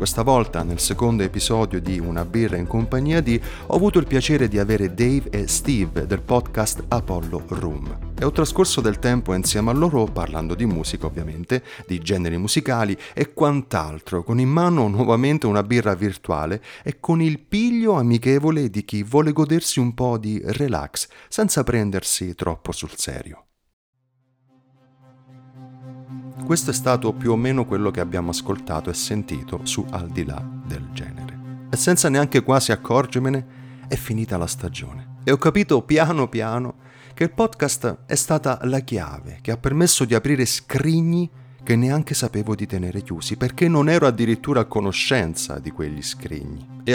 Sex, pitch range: male, 100-135 Hz